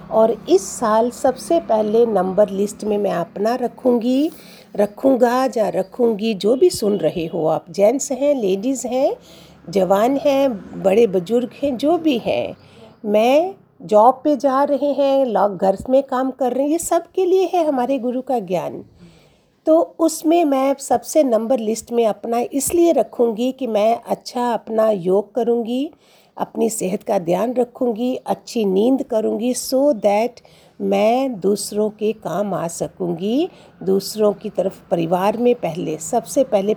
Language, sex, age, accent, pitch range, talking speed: Hindi, female, 50-69, native, 200-260 Hz, 155 wpm